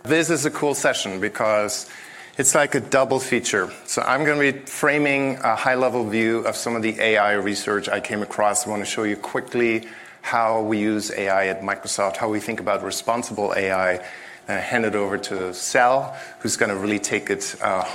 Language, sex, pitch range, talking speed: English, male, 100-120 Hz, 205 wpm